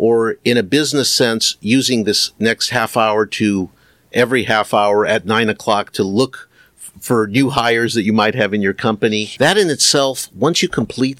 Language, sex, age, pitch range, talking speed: English, male, 50-69, 110-135 Hz, 190 wpm